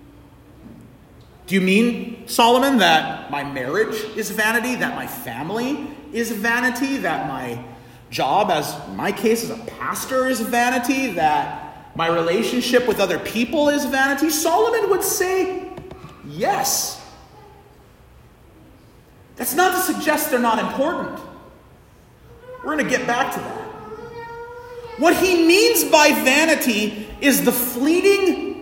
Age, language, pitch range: 40-59, English, 235-310 Hz